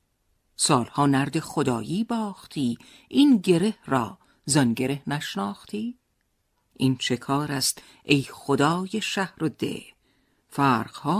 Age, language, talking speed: 50-69, Persian, 100 wpm